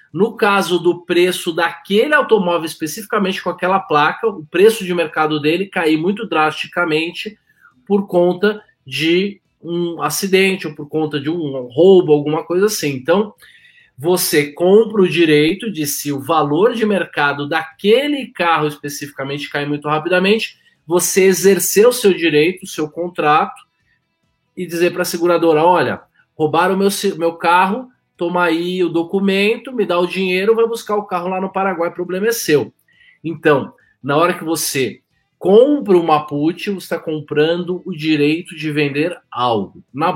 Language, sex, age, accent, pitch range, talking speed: Portuguese, male, 20-39, Brazilian, 155-195 Hz, 150 wpm